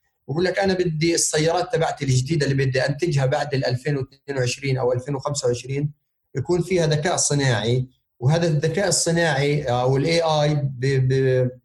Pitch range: 135-170 Hz